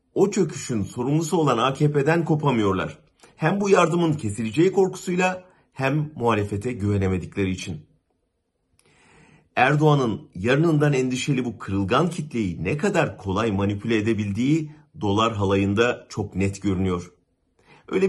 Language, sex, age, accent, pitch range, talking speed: German, male, 50-69, Turkish, 100-155 Hz, 105 wpm